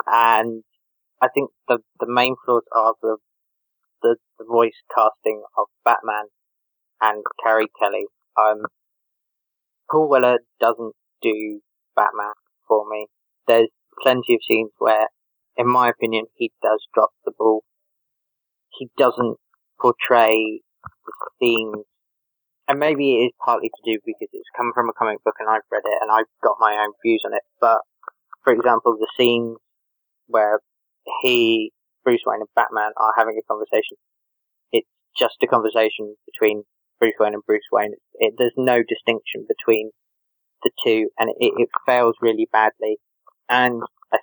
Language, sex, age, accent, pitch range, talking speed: English, male, 20-39, British, 110-155 Hz, 150 wpm